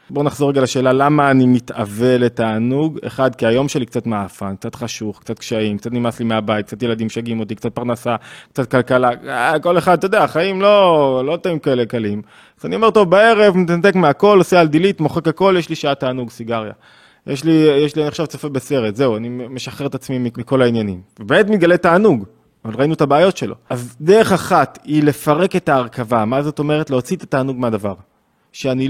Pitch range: 120-155 Hz